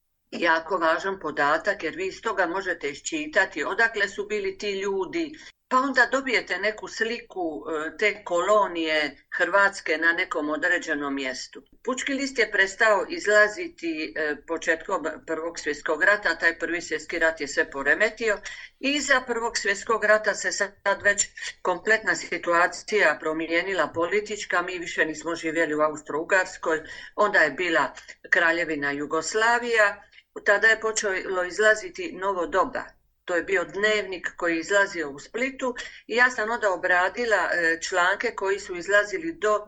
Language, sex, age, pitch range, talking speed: Croatian, female, 50-69, 170-220 Hz, 135 wpm